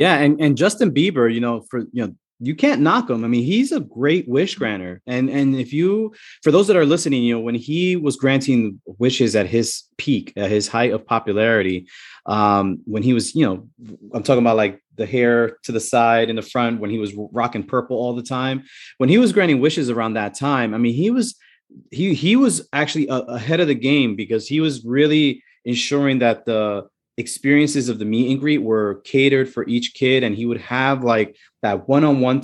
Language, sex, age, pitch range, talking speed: English, male, 30-49, 110-135 Hz, 215 wpm